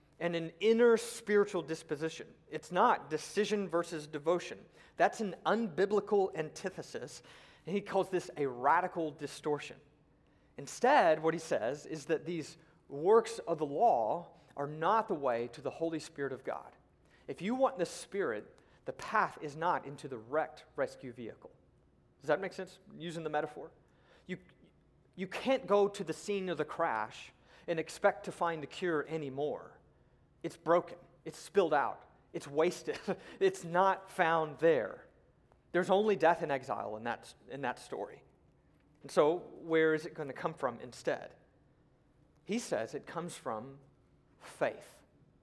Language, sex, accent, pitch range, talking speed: English, male, American, 150-190 Hz, 155 wpm